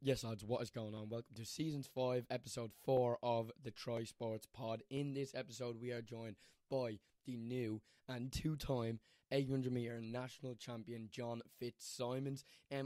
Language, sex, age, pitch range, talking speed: English, male, 20-39, 110-125 Hz, 165 wpm